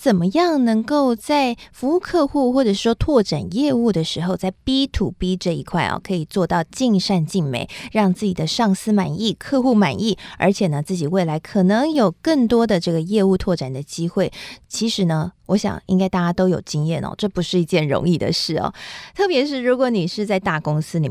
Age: 20-39